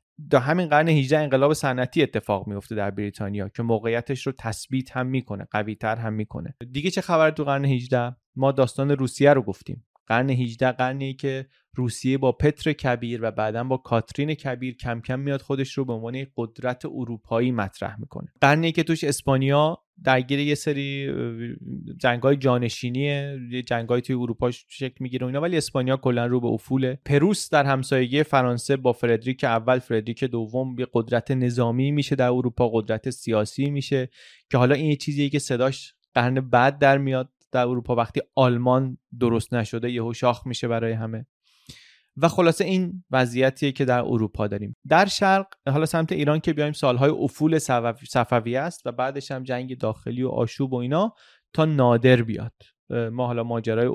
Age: 30-49